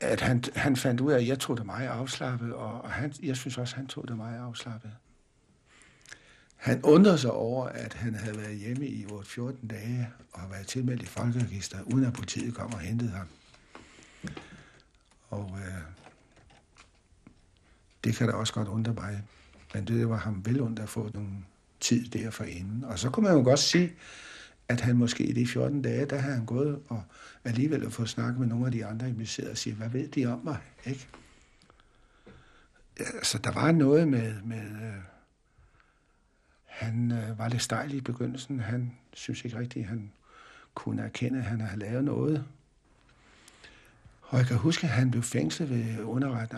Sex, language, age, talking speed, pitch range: male, Danish, 60-79, 180 wpm, 110-130 Hz